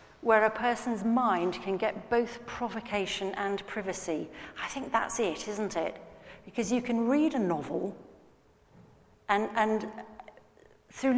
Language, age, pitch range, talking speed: English, 40-59, 180-240 Hz, 135 wpm